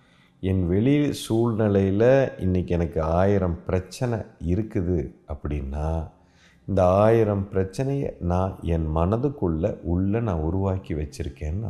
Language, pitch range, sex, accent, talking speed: Tamil, 80-105 Hz, male, native, 95 wpm